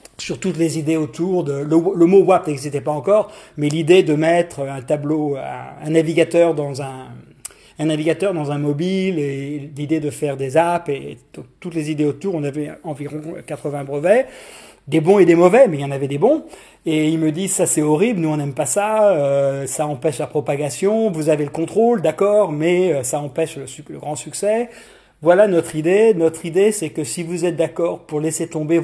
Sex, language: male, French